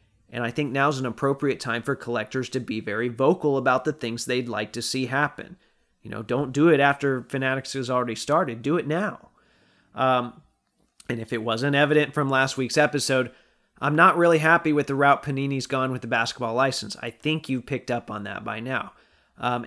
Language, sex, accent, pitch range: English, male, American, 120-140 Hz